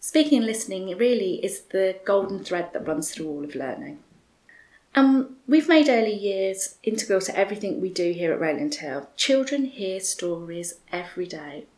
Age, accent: 30-49, British